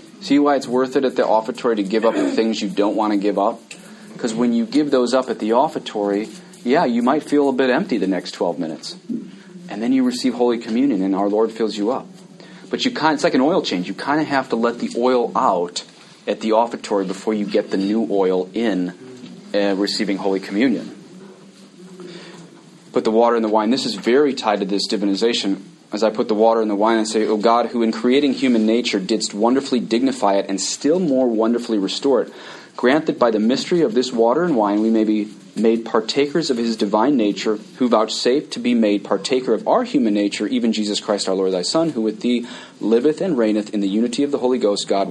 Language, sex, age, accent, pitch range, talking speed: English, male, 30-49, American, 105-135 Hz, 230 wpm